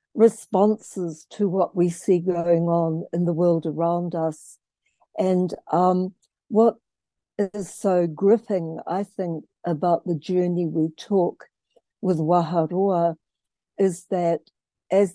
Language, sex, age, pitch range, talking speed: English, female, 60-79, 175-210 Hz, 120 wpm